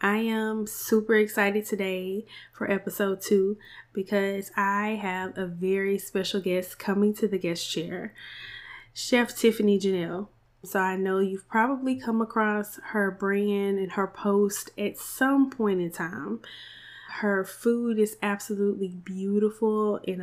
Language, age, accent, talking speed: English, 10-29, American, 135 wpm